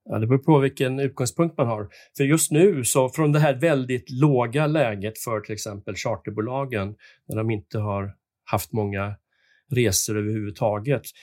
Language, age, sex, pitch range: Swedish, 40-59, male, 110-145 Hz